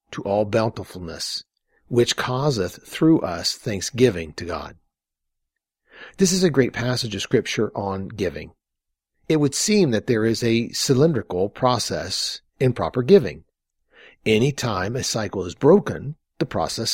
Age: 50-69